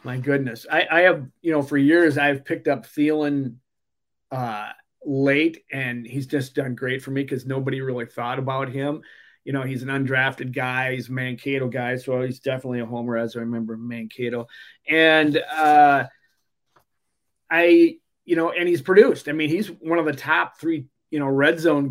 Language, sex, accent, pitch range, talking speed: English, male, American, 130-155 Hz, 185 wpm